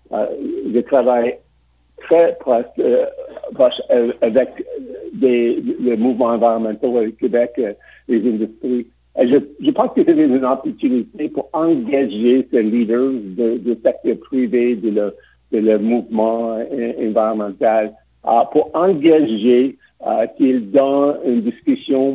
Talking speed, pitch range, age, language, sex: 120 wpm, 115-180 Hz, 60-79, French, male